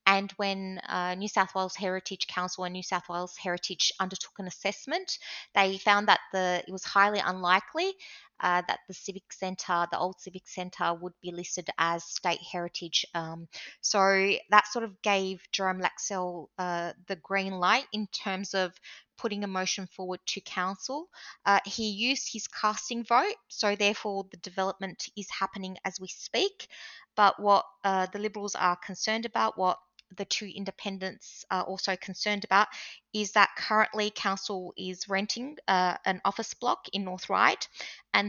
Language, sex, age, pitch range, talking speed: English, female, 20-39, 185-210 Hz, 160 wpm